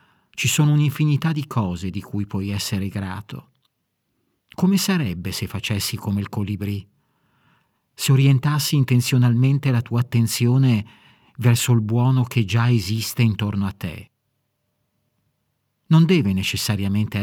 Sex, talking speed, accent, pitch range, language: male, 120 wpm, native, 105-130 Hz, Italian